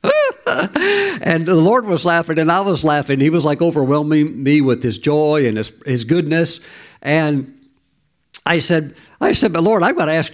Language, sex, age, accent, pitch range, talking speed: English, male, 60-79, American, 130-165 Hz, 190 wpm